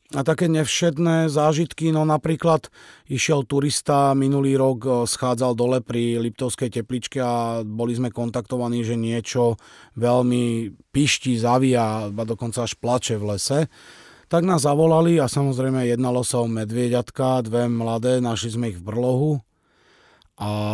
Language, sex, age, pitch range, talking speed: Slovak, male, 30-49, 110-130 Hz, 135 wpm